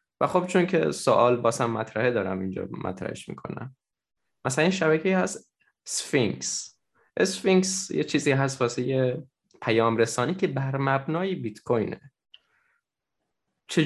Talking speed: 130 wpm